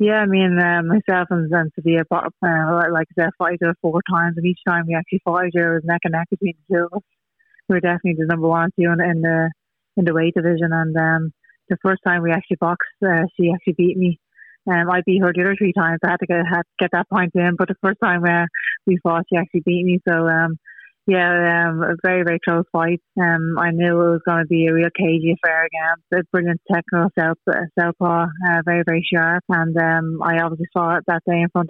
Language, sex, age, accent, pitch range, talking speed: English, female, 30-49, Irish, 170-180 Hz, 240 wpm